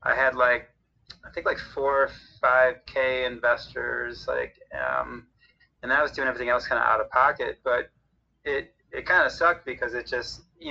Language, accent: English, American